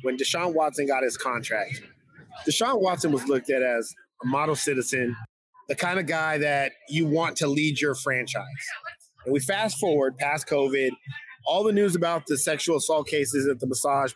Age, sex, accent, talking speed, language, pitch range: 30-49, male, American, 180 wpm, English, 135-175 Hz